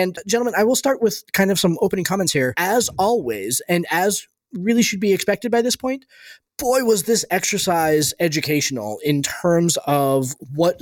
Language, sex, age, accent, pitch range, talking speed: English, male, 20-39, American, 145-175 Hz, 175 wpm